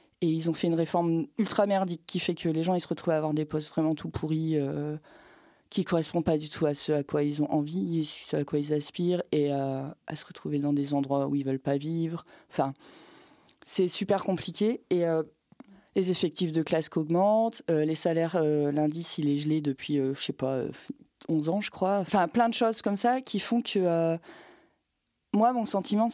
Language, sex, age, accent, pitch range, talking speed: French, female, 30-49, French, 160-210 Hz, 230 wpm